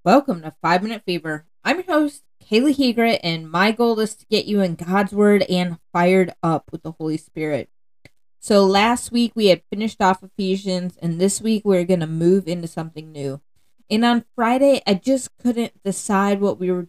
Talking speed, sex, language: 190 wpm, female, English